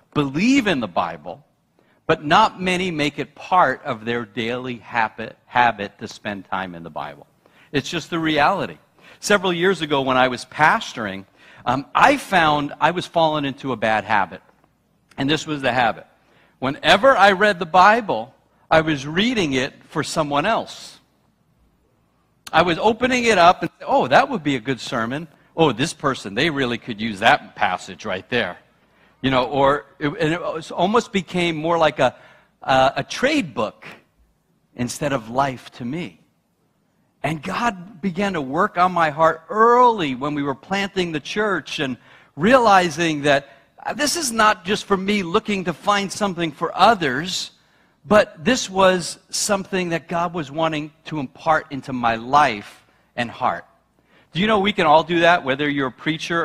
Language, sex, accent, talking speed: English, male, American, 170 wpm